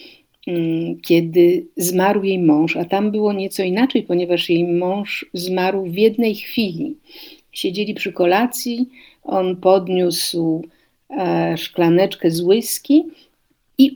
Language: Polish